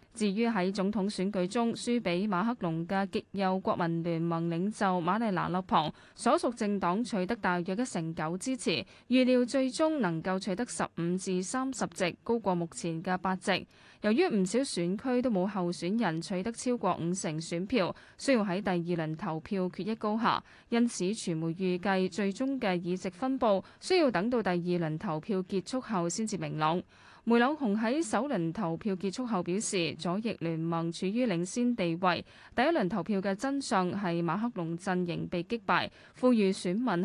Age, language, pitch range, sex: 10-29, Chinese, 175-230 Hz, female